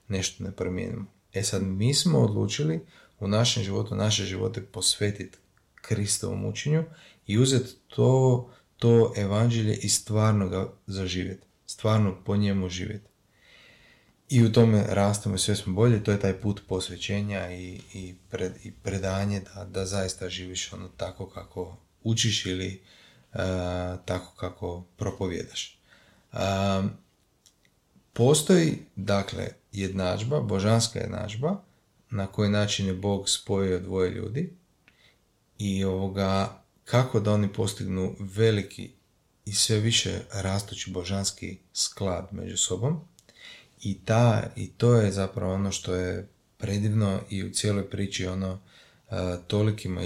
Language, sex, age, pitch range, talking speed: Croatian, male, 30-49, 95-115 Hz, 125 wpm